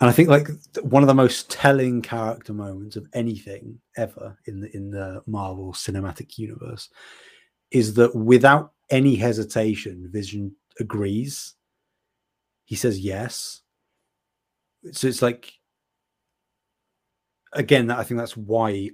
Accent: British